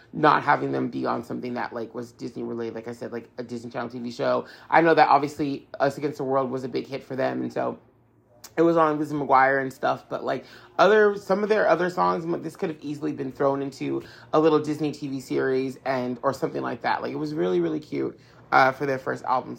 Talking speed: 240 wpm